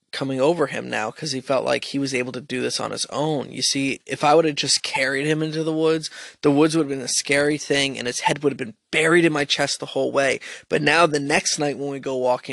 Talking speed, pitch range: 285 wpm, 135-170 Hz